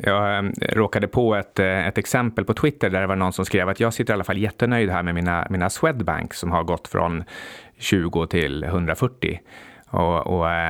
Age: 30-49